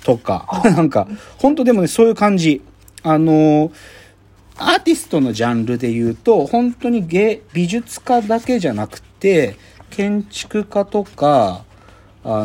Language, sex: Japanese, male